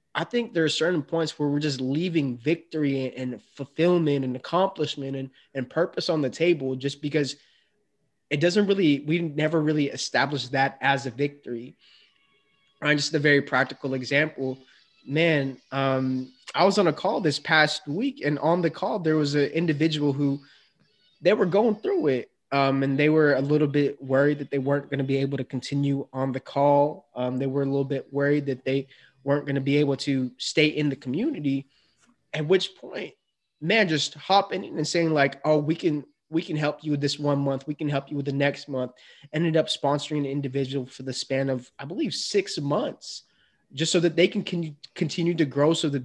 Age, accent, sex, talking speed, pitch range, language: 20-39, American, male, 200 wpm, 135-160 Hz, English